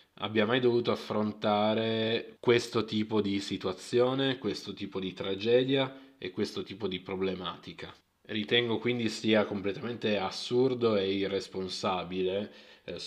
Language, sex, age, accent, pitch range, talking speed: Italian, male, 20-39, native, 95-115 Hz, 115 wpm